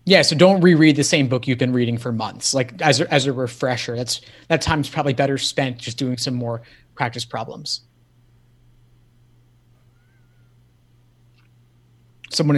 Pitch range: 120-150 Hz